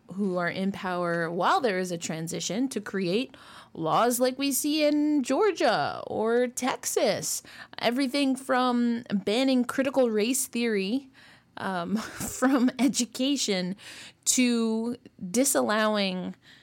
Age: 20-39